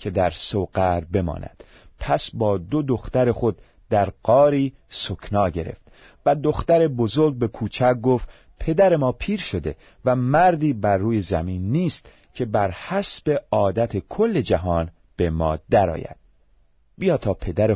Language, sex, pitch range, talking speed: Persian, male, 95-135 Hz, 140 wpm